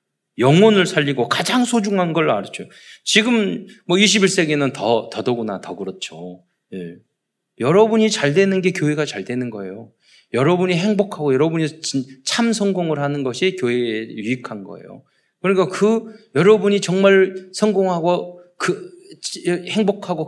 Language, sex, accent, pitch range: Korean, male, native, 130-205 Hz